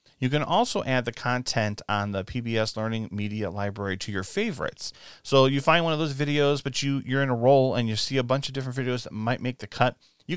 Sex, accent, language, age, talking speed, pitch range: male, American, English, 40-59, 235 wpm, 105-140 Hz